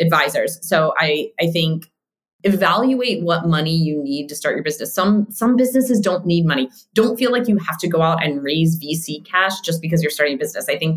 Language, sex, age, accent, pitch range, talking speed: English, female, 20-39, American, 155-195 Hz, 220 wpm